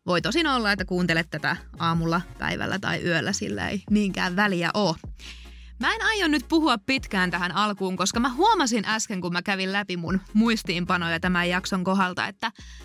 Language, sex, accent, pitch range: Finnish, female, native, 180-230 Hz